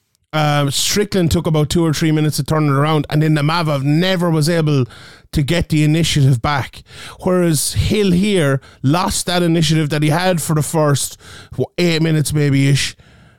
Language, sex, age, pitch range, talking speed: English, male, 30-49, 140-165 Hz, 175 wpm